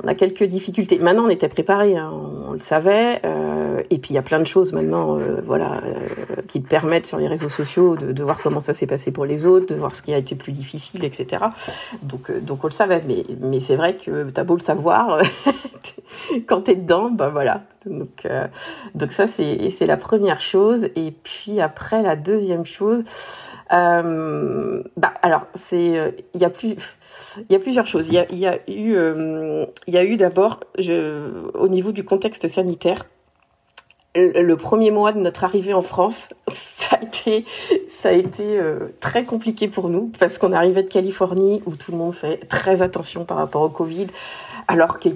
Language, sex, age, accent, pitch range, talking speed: French, female, 50-69, French, 160-205 Hz, 200 wpm